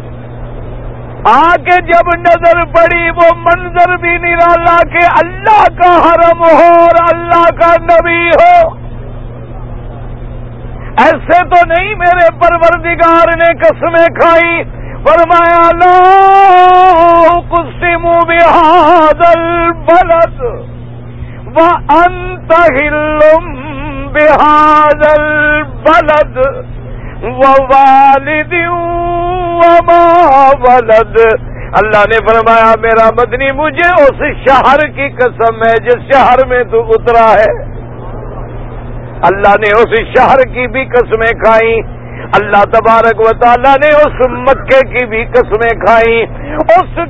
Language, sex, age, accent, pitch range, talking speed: English, male, 50-69, Indian, 245-340 Hz, 85 wpm